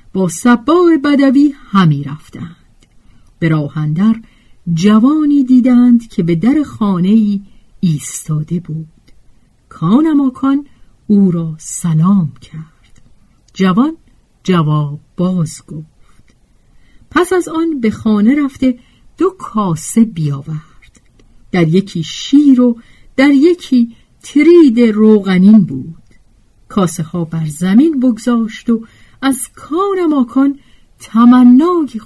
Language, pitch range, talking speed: Persian, 160-255 Hz, 95 wpm